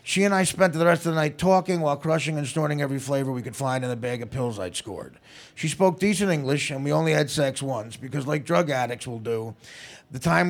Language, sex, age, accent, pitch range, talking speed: English, male, 30-49, American, 130-160 Hz, 250 wpm